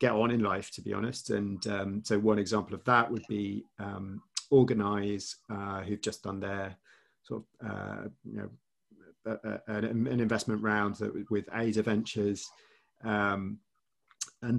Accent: British